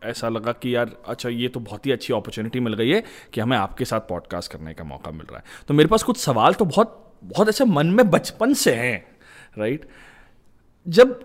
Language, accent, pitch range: Hindi, native, 125-200 Hz